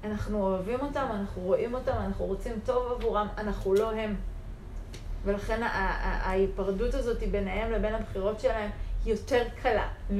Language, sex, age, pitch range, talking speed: Hebrew, female, 30-49, 195-260 Hz, 145 wpm